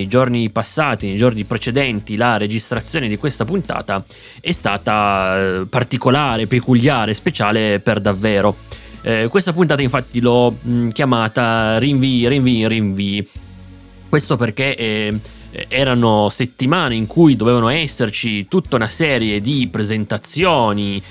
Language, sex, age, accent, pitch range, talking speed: Italian, male, 30-49, native, 105-130 Hz, 115 wpm